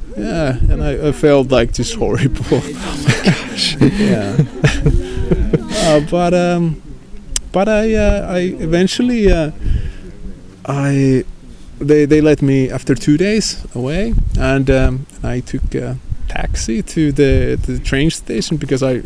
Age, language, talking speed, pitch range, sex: 20-39, English, 140 wpm, 125-180 Hz, male